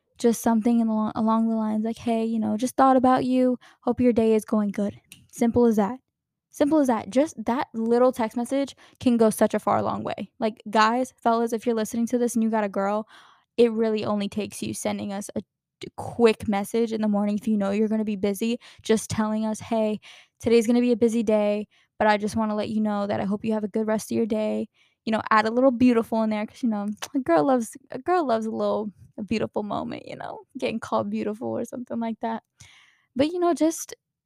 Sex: female